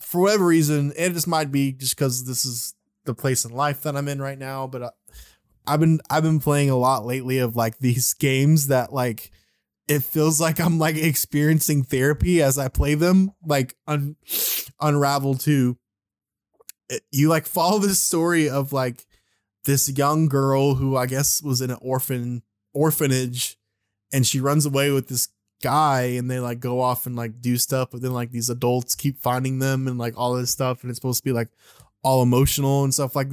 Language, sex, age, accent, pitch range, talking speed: English, male, 20-39, American, 125-145 Hz, 195 wpm